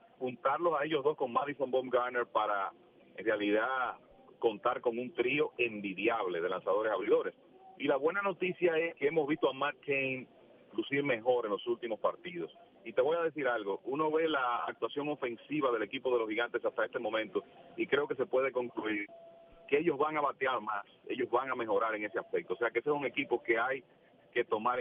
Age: 40-59